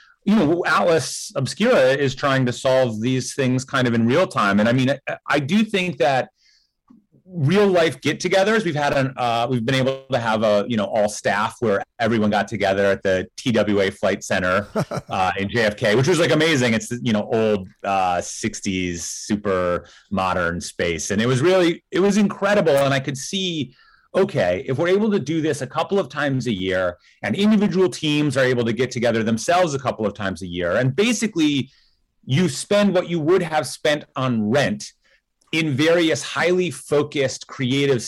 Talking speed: 190 wpm